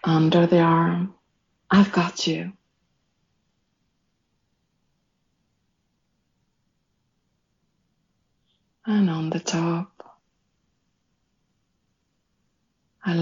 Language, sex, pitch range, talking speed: English, female, 170-205 Hz, 50 wpm